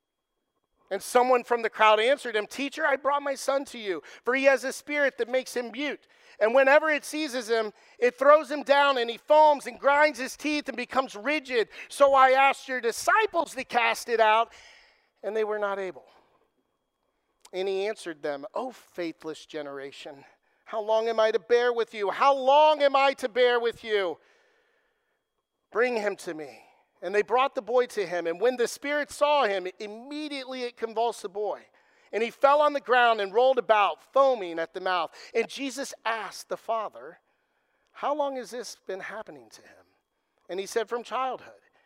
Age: 50-69